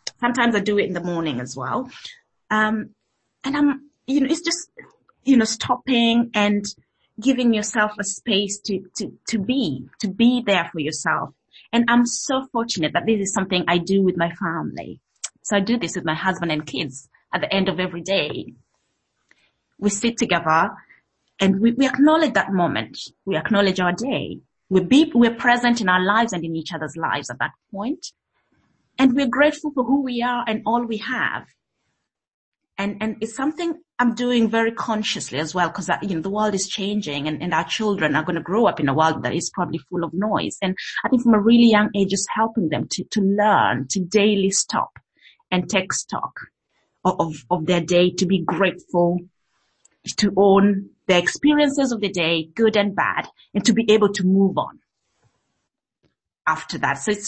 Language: English